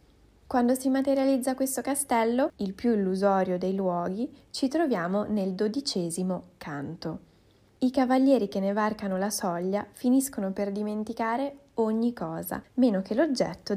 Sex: female